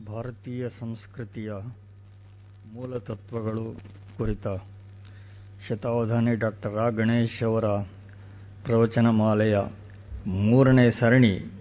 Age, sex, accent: 50-69, male, native